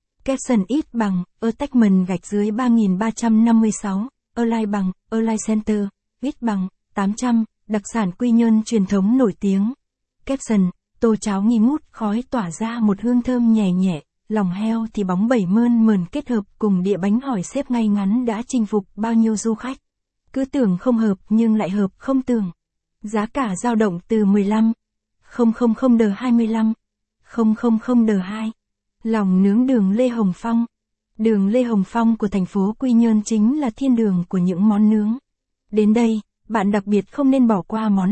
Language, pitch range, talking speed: Vietnamese, 205-240 Hz, 190 wpm